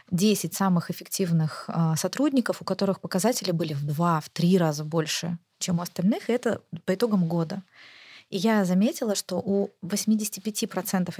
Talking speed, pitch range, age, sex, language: 145 wpm, 170-200 Hz, 20-39, female, Russian